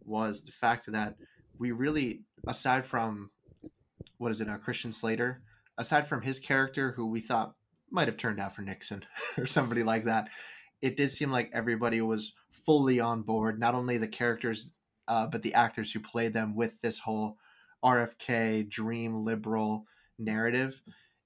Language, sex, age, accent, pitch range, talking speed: English, male, 20-39, American, 110-130 Hz, 165 wpm